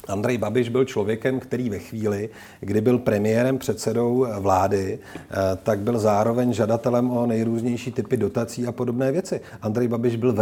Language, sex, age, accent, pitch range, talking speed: Czech, male, 40-59, native, 105-130 Hz, 155 wpm